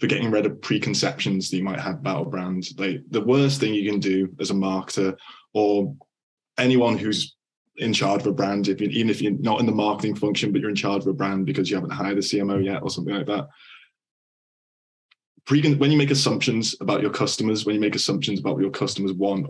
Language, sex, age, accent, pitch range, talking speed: English, male, 20-39, British, 100-115 Hz, 230 wpm